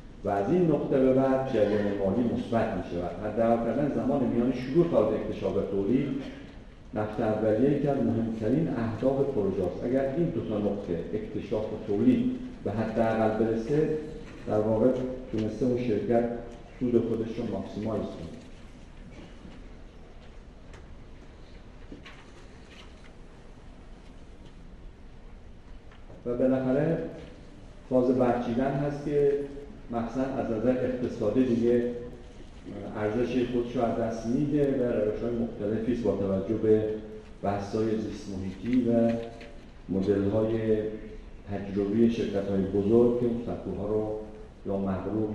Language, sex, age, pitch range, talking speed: Persian, male, 50-69, 100-125 Hz, 105 wpm